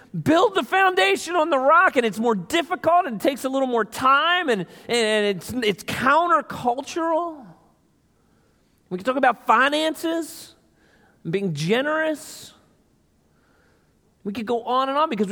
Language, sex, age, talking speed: English, male, 40-59, 140 wpm